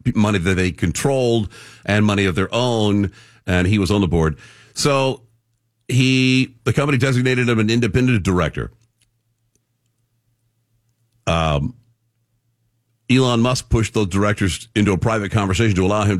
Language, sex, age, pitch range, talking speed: English, male, 50-69, 100-120 Hz, 135 wpm